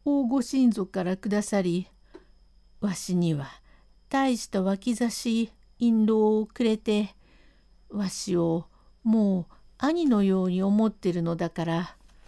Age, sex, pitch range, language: 50-69, female, 205-260 Hz, Japanese